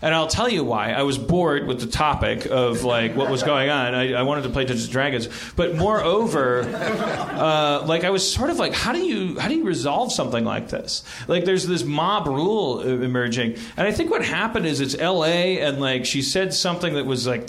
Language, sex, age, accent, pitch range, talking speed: English, male, 40-59, American, 125-160 Hz, 225 wpm